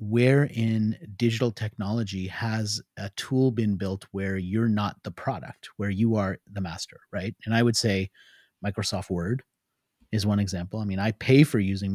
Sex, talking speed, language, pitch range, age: male, 175 wpm, English, 105-145 Hz, 30-49